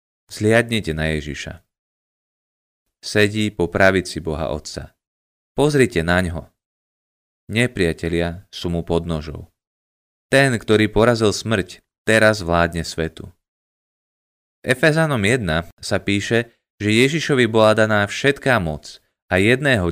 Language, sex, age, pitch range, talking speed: Slovak, male, 20-39, 85-110 Hz, 110 wpm